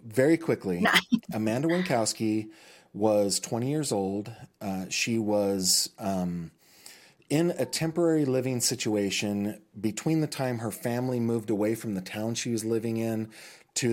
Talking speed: 140 wpm